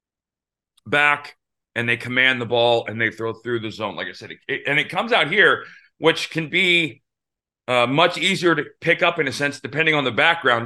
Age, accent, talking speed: 30-49, American, 205 wpm